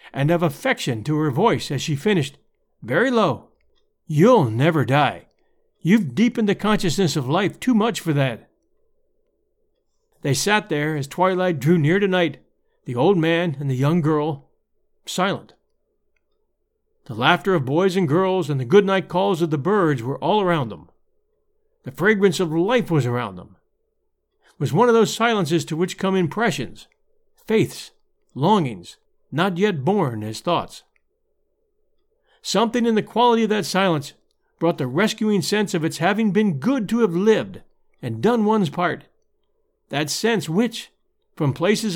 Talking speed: 160 wpm